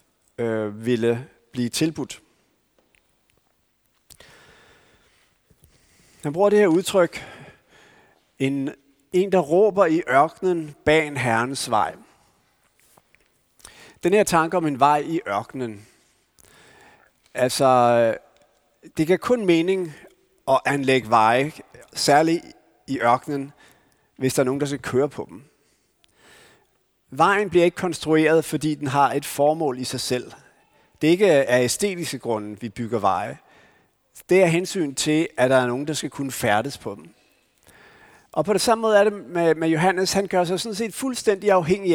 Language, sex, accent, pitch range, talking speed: Danish, male, native, 135-190 Hz, 140 wpm